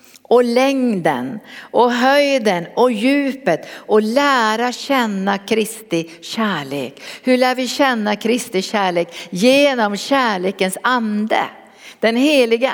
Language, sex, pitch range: Swedish, female, 200-255 Hz